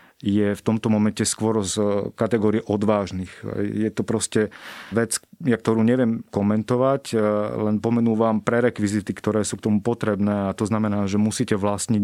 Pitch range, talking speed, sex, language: 105-120 Hz, 160 wpm, male, Slovak